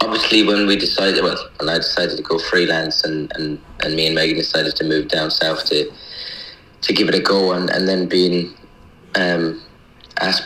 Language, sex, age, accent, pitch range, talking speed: English, male, 30-49, British, 80-95 Hz, 195 wpm